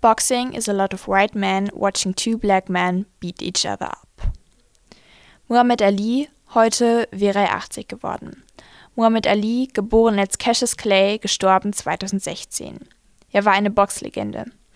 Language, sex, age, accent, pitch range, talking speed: German, female, 20-39, German, 195-225 Hz, 140 wpm